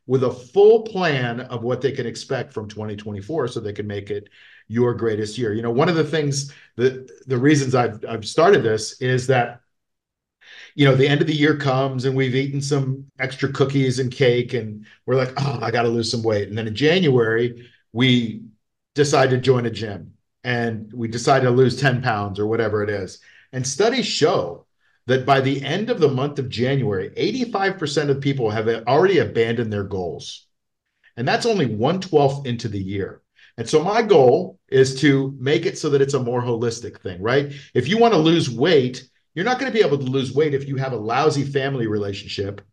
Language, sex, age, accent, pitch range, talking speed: English, male, 50-69, American, 115-140 Hz, 205 wpm